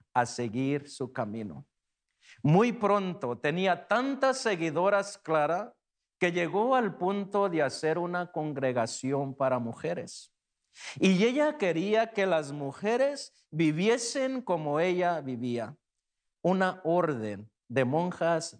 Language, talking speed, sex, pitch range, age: Spanish, 110 wpm, male, 140-205 Hz, 50-69